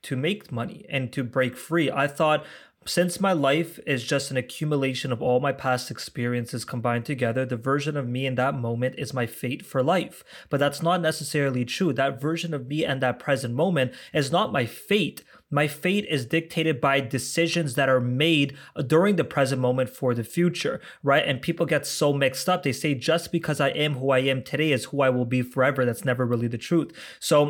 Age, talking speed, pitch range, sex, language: 20-39, 210 wpm, 130-160 Hz, male, English